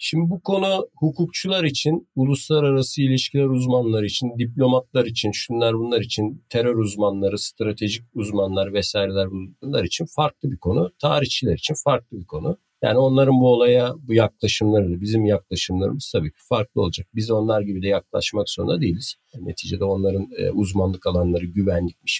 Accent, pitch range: native, 95-125 Hz